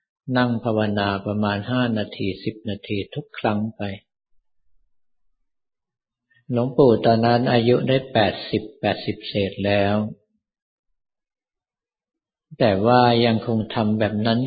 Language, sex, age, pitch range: Thai, male, 50-69, 105-120 Hz